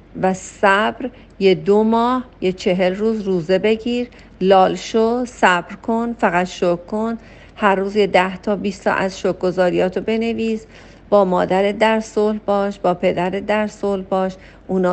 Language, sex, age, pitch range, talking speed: Persian, female, 50-69, 180-215 Hz, 150 wpm